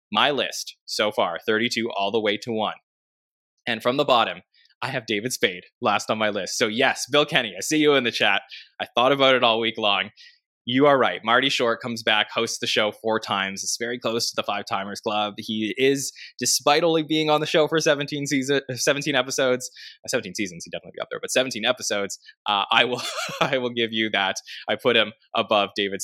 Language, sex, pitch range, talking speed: English, male, 105-130 Hz, 215 wpm